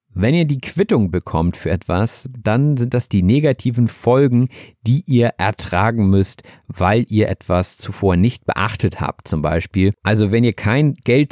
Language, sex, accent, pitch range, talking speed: German, male, German, 95-125 Hz, 165 wpm